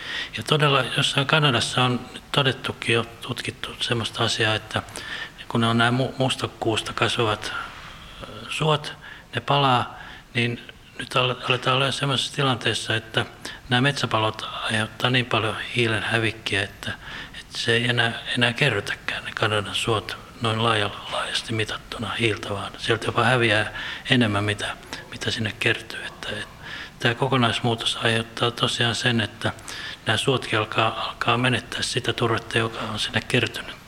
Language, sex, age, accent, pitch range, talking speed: Finnish, male, 60-79, native, 110-125 Hz, 135 wpm